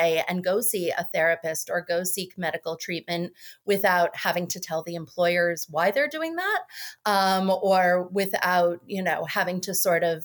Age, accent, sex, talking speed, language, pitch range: 30-49, American, female, 170 wpm, English, 175-220 Hz